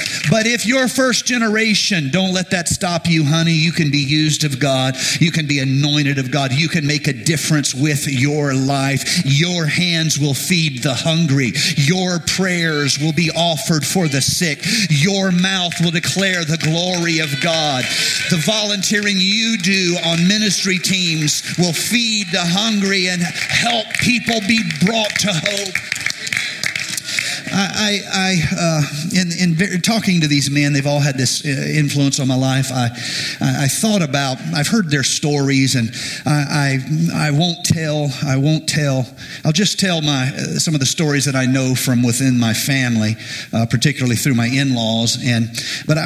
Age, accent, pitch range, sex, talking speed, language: 50-69, American, 130-175 Hz, male, 165 wpm, English